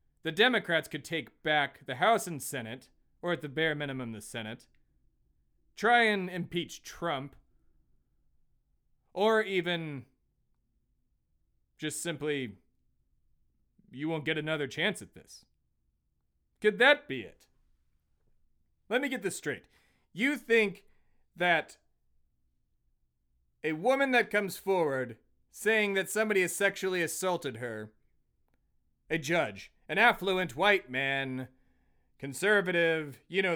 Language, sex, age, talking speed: English, male, 30-49, 115 wpm